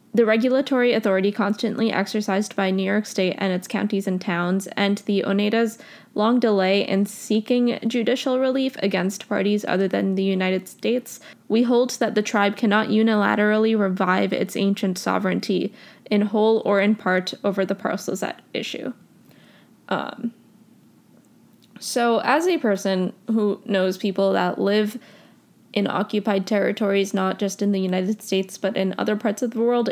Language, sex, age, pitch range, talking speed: English, female, 10-29, 195-230 Hz, 155 wpm